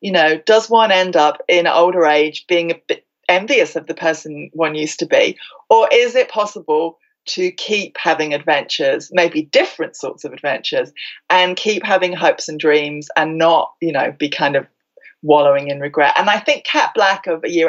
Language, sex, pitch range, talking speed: English, female, 155-260 Hz, 195 wpm